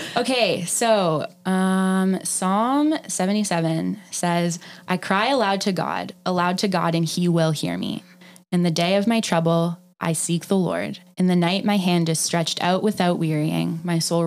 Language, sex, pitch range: English, female, 165-190 Hz